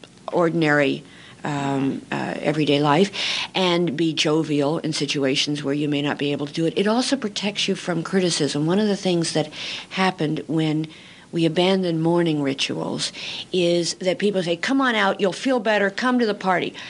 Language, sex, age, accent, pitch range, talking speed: English, female, 50-69, American, 165-235 Hz, 180 wpm